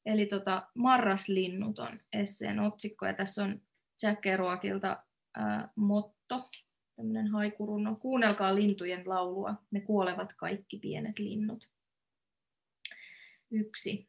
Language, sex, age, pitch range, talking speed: Finnish, female, 20-39, 180-215 Hz, 110 wpm